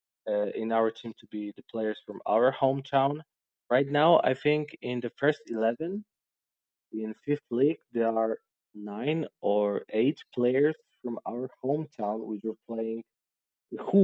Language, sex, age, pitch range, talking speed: English, male, 20-39, 105-125 Hz, 135 wpm